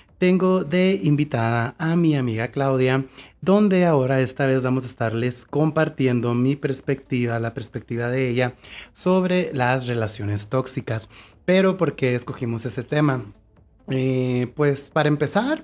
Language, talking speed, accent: Spanish, 135 wpm, Mexican